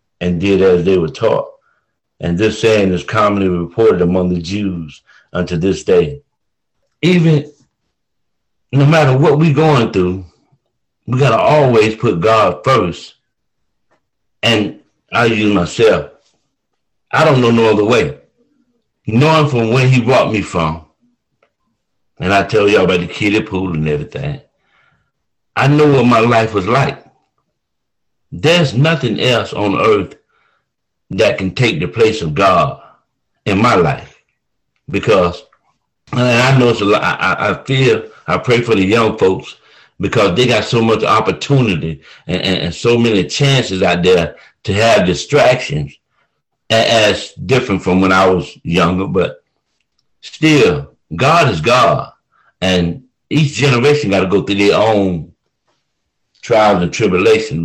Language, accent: English, American